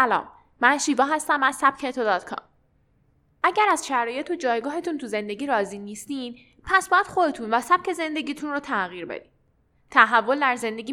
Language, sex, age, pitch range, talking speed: Persian, female, 10-29, 235-315 Hz, 160 wpm